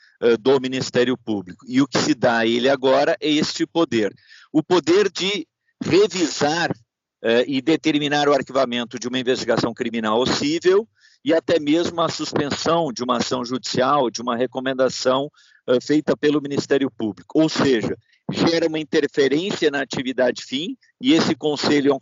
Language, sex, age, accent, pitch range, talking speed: Portuguese, male, 50-69, Brazilian, 130-170 Hz, 155 wpm